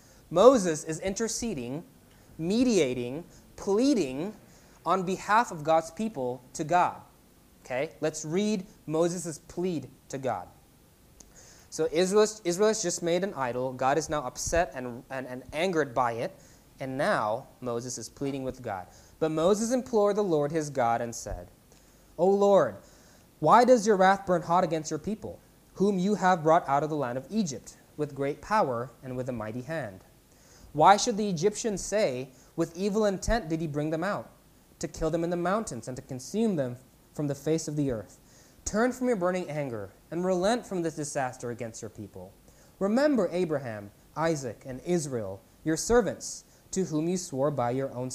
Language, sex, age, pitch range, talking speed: English, male, 20-39, 125-185 Hz, 175 wpm